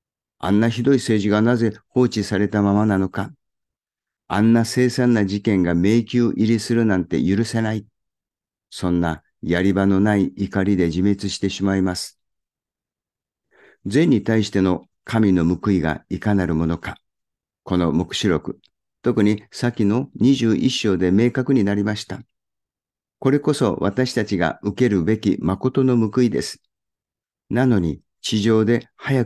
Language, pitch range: Japanese, 95-120 Hz